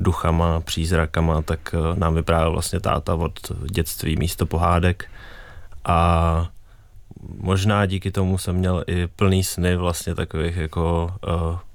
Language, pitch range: Czech, 85-95 Hz